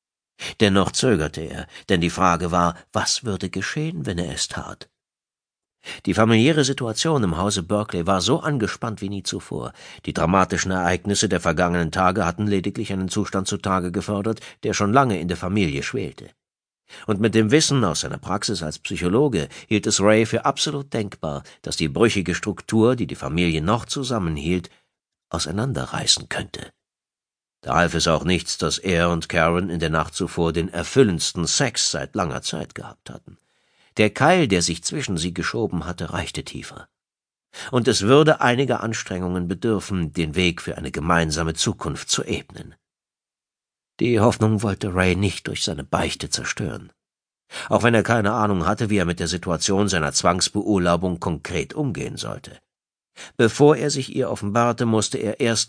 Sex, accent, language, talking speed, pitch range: male, German, German, 160 wpm, 85-110 Hz